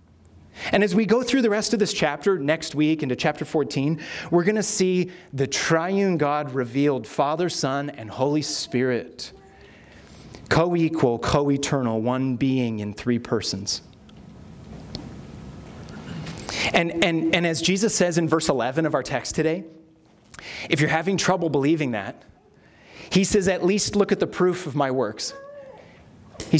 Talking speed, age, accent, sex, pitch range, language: 150 wpm, 30-49, American, male, 140-190 Hz, English